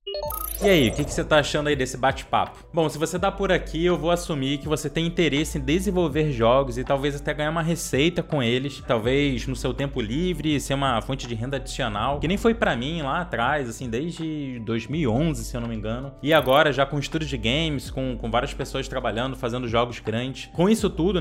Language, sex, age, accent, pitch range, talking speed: Portuguese, male, 20-39, Brazilian, 135-165 Hz, 220 wpm